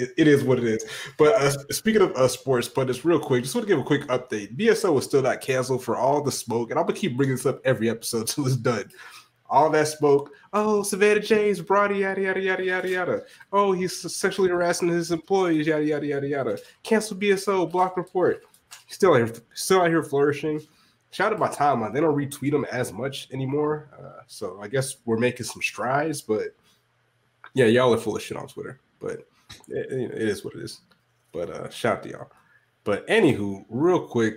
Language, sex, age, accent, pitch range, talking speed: English, male, 20-39, American, 115-170 Hz, 215 wpm